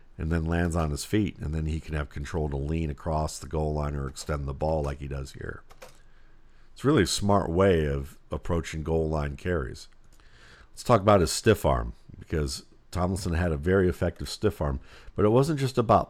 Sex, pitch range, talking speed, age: male, 80-100 Hz, 205 wpm, 50-69